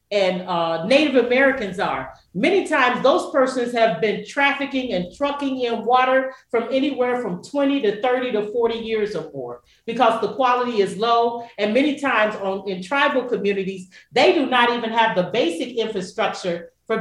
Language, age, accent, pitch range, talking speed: English, 40-59, American, 205-275 Hz, 165 wpm